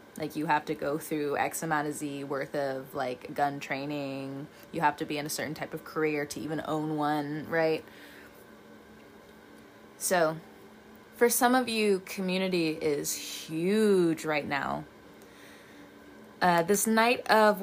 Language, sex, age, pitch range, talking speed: English, female, 20-39, 165-215 Hz, 150 wpm